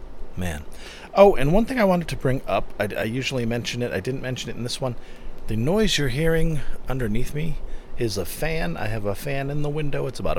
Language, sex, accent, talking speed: English, male, American, 230 wpm